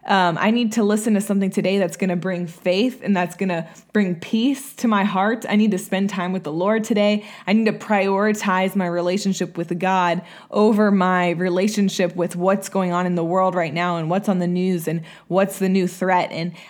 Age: 20-39